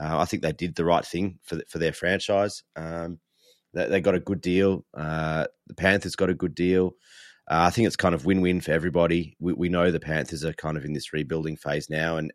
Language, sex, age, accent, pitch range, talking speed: English, male, 30-49, Australian, 80-90 Hz, 250 wpm